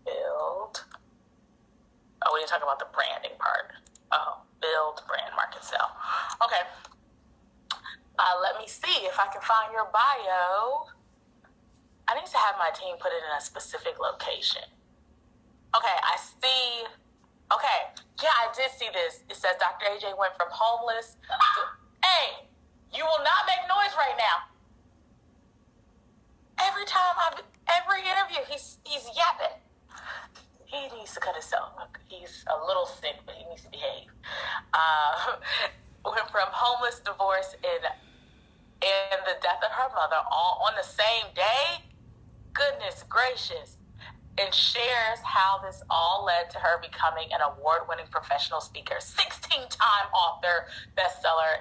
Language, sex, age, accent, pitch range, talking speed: English, female, 20-39, American, 185-305 Hz, 140 wpm